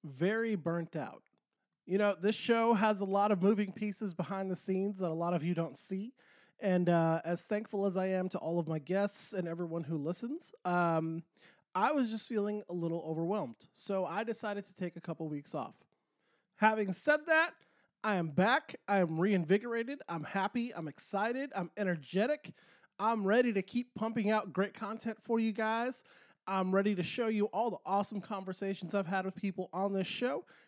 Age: 20-39